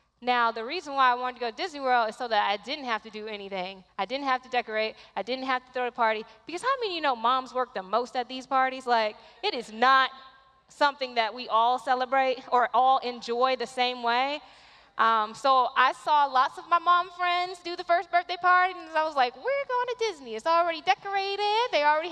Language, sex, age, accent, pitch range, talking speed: English, female, 10-29, American, 240-335 Hz, 235 wpm